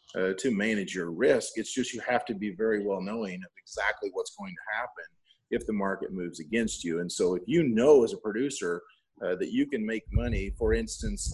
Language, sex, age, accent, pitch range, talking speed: English, male, 30-49, American, 105-150 Hz, 220 wpm